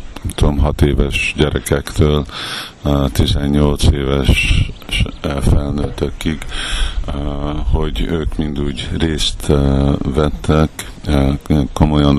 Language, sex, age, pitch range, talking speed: Hungarian, male, 50-69, 70-80 Hz, 65 wpm